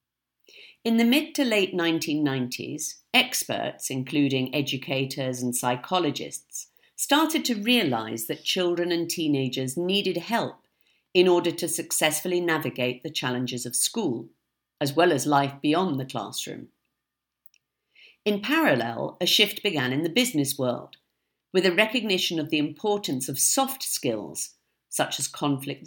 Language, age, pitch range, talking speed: English, 50-69, 135-195 Hz, 130 wpm